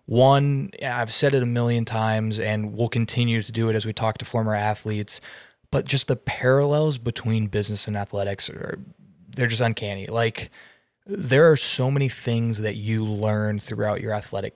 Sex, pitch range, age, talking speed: male, 110-130 Hz, 20-39, 175 wpm